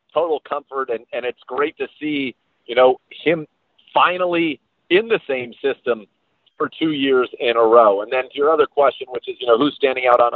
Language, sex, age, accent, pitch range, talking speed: English, male, 40-59, American, 115-160 Hz, 210 wpm